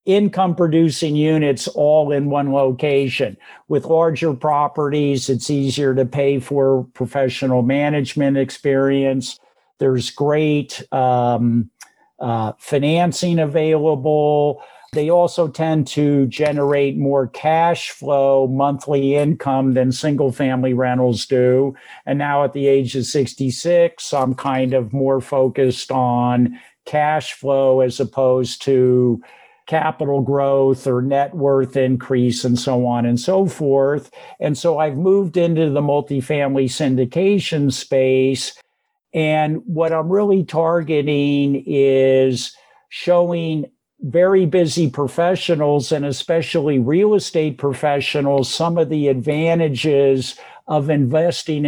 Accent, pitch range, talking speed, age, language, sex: American, 130-155 Hz, 115 wpm, 50-69, English, male